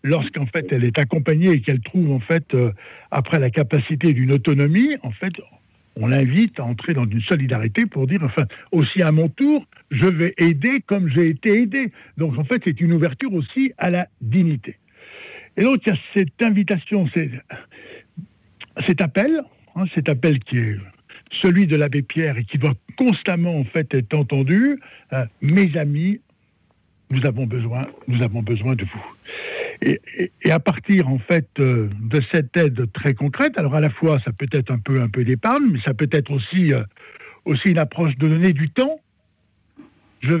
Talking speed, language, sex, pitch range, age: 185 wpm, French, male, 135-190 Hz, 60-79